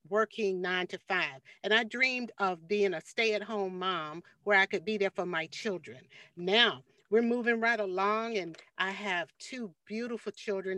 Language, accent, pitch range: English, American, 185-225 Hz